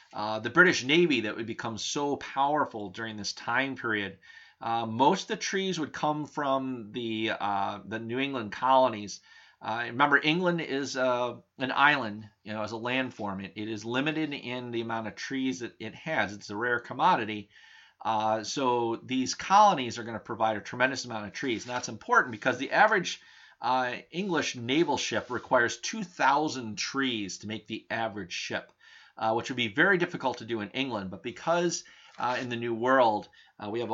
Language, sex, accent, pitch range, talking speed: English, male, American, 110-140 Hz, 185 wpm